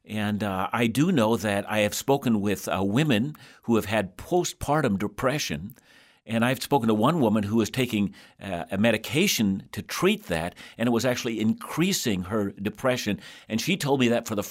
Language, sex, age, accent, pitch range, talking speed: English, male, 60-79, American, 105-135 Hz, 190 wpm